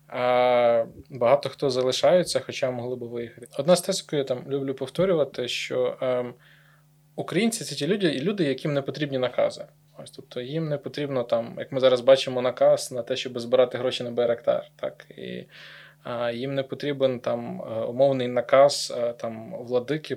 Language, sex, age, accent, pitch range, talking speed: Ukrainian, male, 20-39, native, 125-145 Hz, 165 wpm